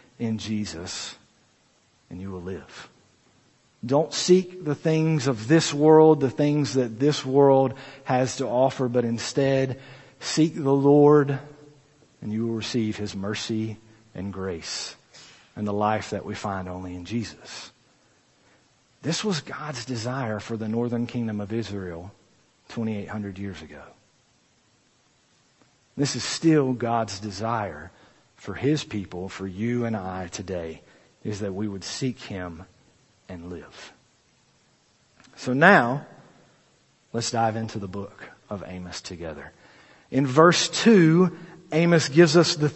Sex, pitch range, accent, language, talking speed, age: male, 105-160 Hz, American, English, 130 wpm, 50-69